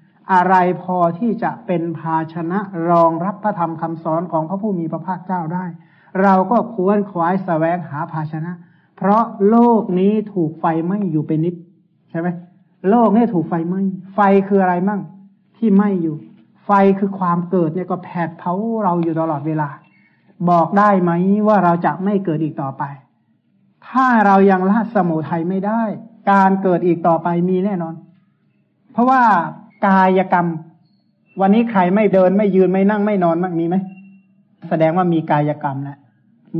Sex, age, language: male, 60-79, Thai